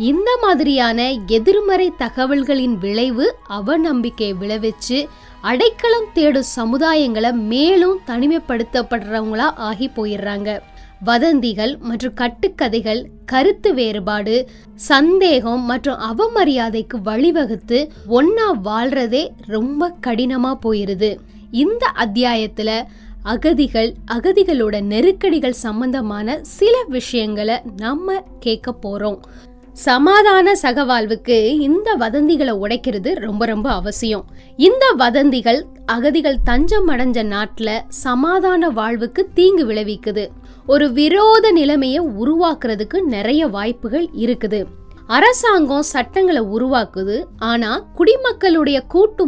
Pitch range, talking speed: 225-320 Hz, 80 wpm